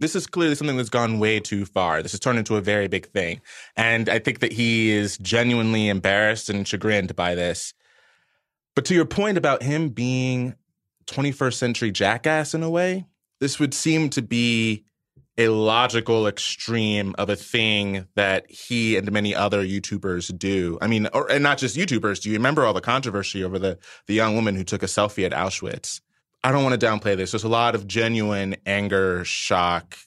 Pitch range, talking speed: 95-120 Hz, 195 wpm